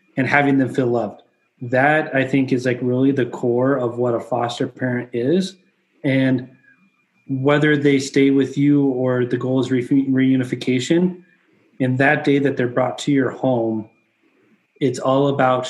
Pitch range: 125-140 Hz